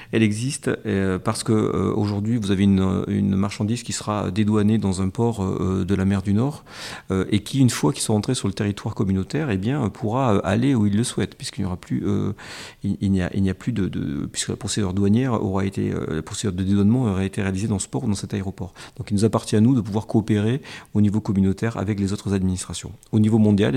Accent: French